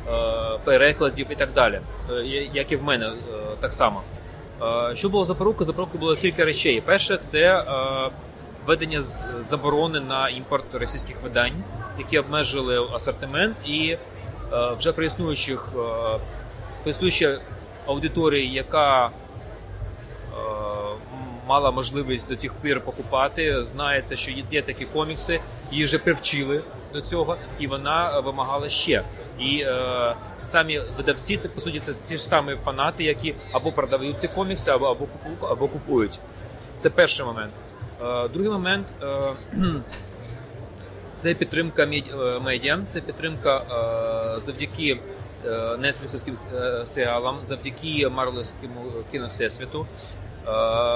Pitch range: 115-150 Hz